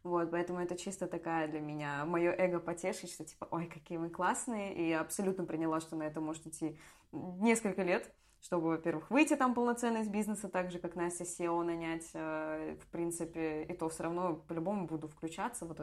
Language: Russian